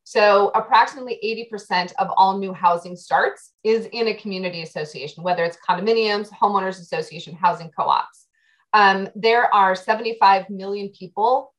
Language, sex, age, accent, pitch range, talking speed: English, female, 30-49, American, 180-225 Hz, 130 wpm